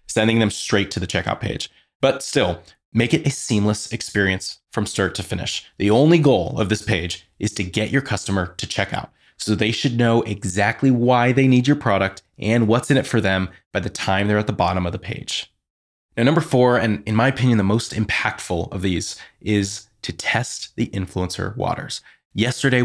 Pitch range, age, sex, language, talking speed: 100-135 Hz, 20-39, male, English, 200 wpm